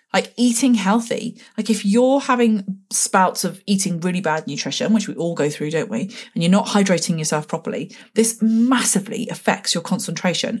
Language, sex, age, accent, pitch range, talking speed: English, female, 30-49, British, 175-230 Hz, 175 wpm